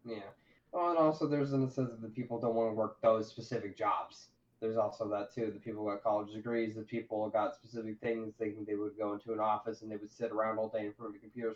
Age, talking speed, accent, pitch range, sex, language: 20-39, 275 wpm, American, 110-125 Hz, male, English